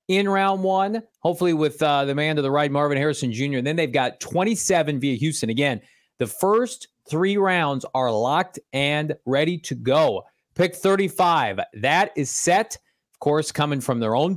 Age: 30-49